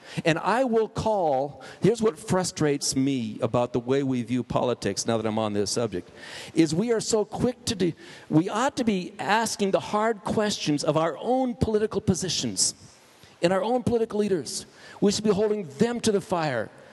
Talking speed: 190 wpm